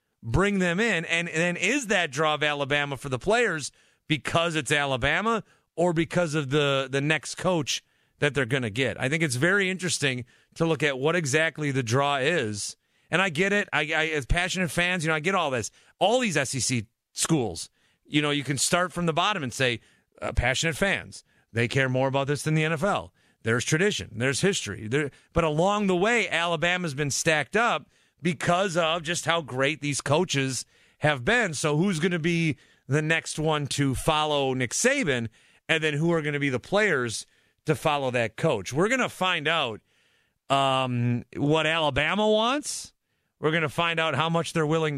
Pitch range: 140-175 Hz